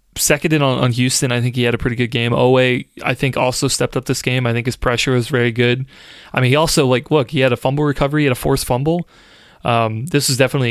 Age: 20-39